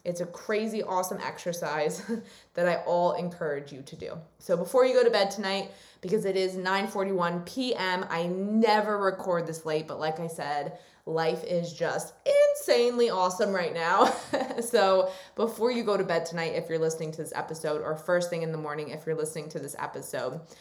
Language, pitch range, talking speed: English, 165-200 Hz, 190 wpm